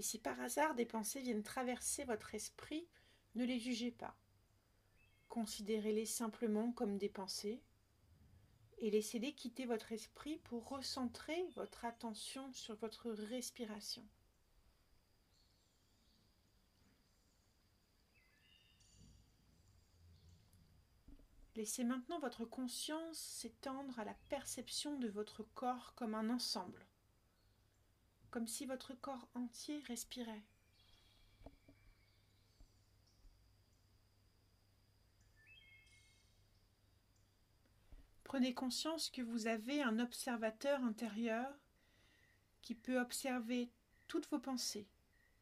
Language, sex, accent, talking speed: French, female, French, 85 wpm